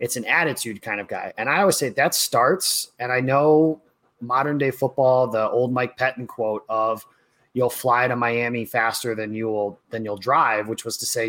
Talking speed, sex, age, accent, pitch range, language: 205 wpm, male, 30-49, American, 115-140 Hz, English